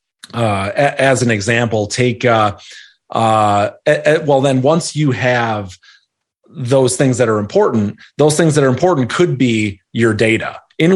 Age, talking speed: 30-49, 150 wpm